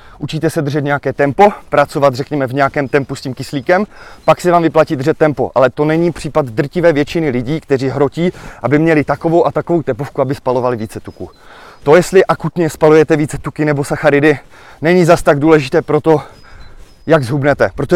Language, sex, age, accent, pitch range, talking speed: Czech, male, 20-39, native, 135-155 Hz, 180 wpm